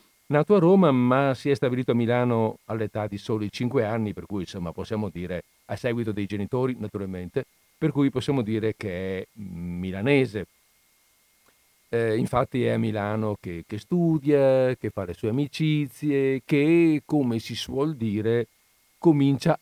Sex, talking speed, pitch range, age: male, 155 wpm, 105-140 Hz, 50-69